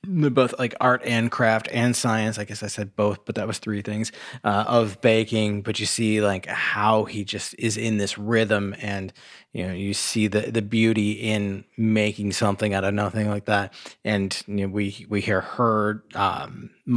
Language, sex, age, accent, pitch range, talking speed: English, male, 30-49, American, 100-110 Hz, 185 wpm